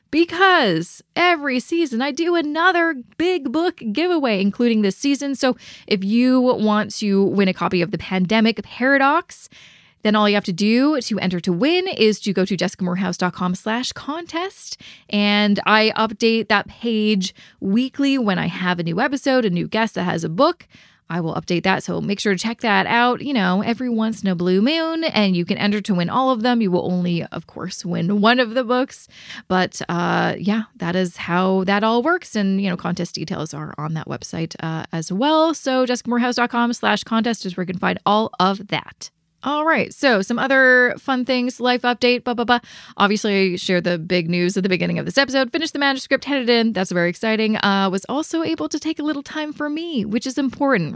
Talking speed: 210 wpm